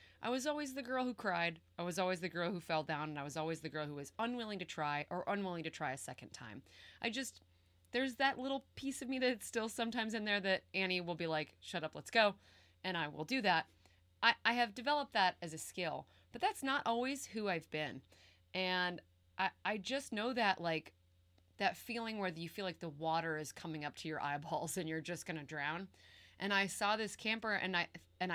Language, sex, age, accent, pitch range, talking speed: English, female, 30-49, American, 155-225 Hz, 235 wpm